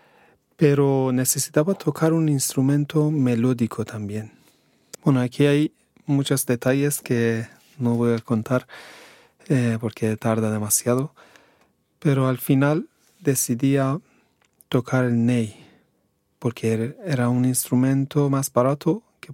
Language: Portuguese